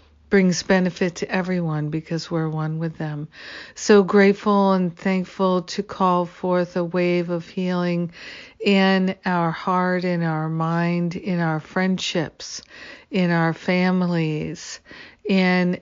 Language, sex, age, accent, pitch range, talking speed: English, female, 50-69, American, 165-185 Hz, 125 wpm